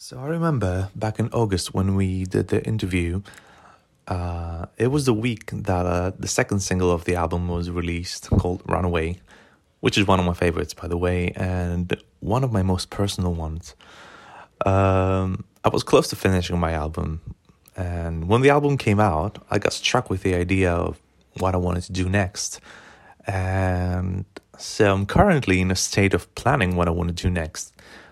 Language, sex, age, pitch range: English, male, 30-49, 85-100 Hz